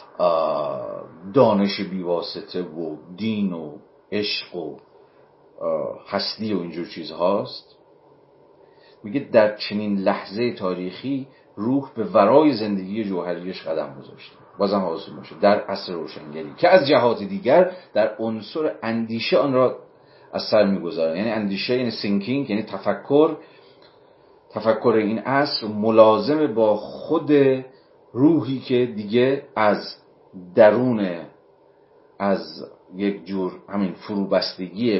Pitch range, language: 95-130 Hz, Persian